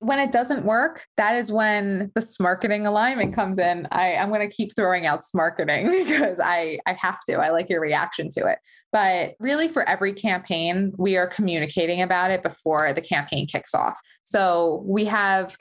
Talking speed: 185 wpm